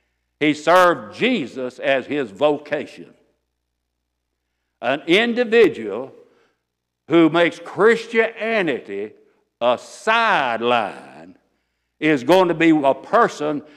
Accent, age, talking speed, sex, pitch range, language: American, 60-79, 85 wpm, male, 135-205 Hz, English